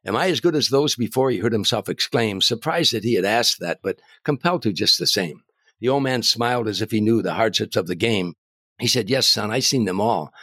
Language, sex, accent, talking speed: English, male, American, 255 wpm